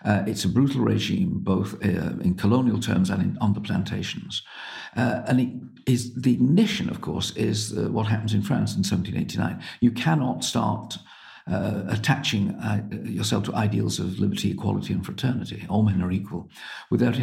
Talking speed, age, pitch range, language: 175 wpm, 50-69, 100-120 Hz, English